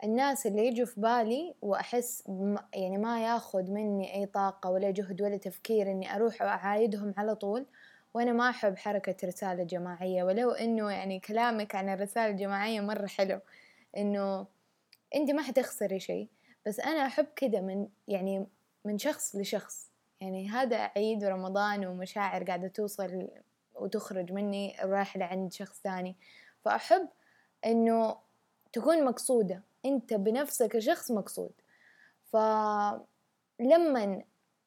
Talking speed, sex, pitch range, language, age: 125 wpm, female, 200-240 Hz, Arabic, 10-29